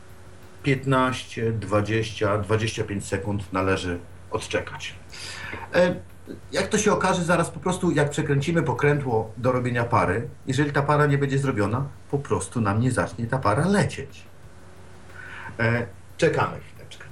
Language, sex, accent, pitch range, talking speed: Polish, male, native, 100-150 Hz, 125 wpm